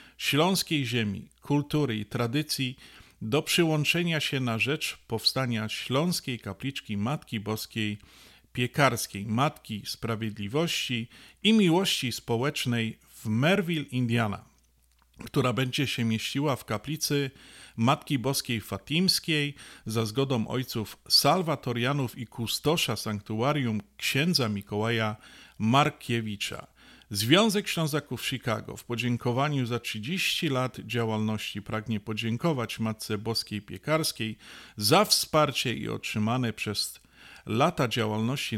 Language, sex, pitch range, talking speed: Polish, male, 110-145 Hz, 100 wpm